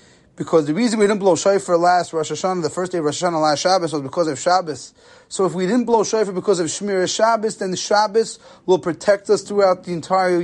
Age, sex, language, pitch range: 30-49, male, English, 180-220 Hz